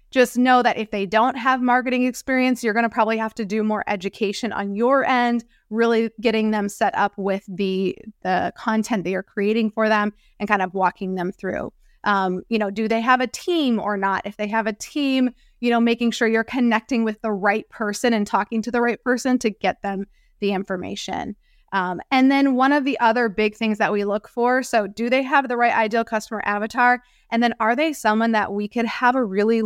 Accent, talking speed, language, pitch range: American, 225 wpm, English, 205-240 Hz